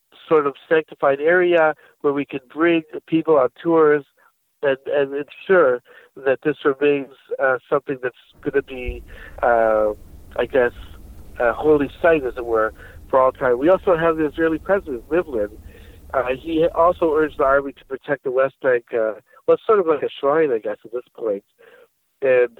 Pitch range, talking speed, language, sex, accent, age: 120-165 Hz, 180 wpm, English, male, American, 60-79